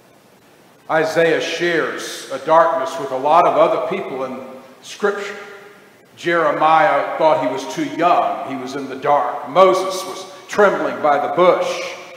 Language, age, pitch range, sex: English, 50-69, 160-200 Hz, male